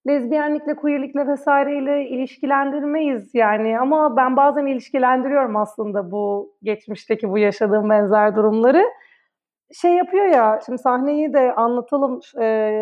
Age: 30-49